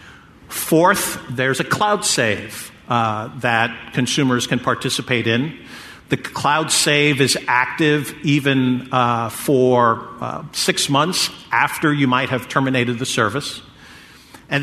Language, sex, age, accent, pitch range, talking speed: English, male, 50-69, American, 125-150 Hz, 125 wpm